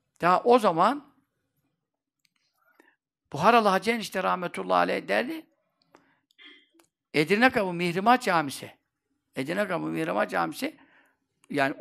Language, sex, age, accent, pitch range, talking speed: Turkish, male, 60-79, native, 150-225 Hz, 80 wpm